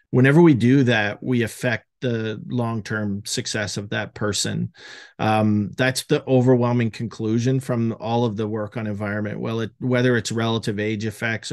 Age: 40-59